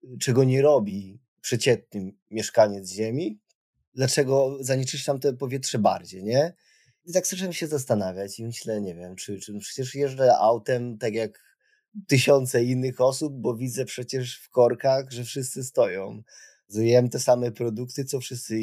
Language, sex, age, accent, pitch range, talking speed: Polish, male, 20-39, native, 115-140 Hz, 140 wpm